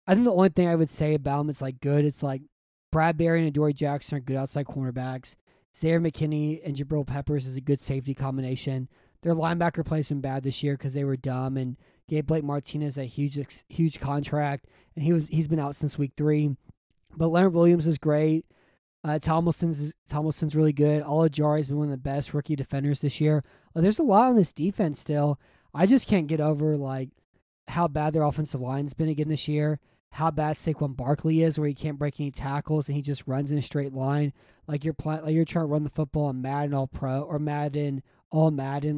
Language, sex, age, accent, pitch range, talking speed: English, male, 20-39, American, 135-160 Hz, 210 wpm